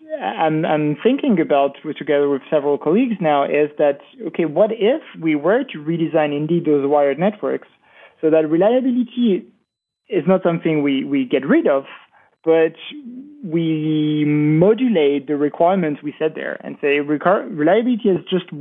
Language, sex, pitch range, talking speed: English, male, 150-195 Hz, 150 wpm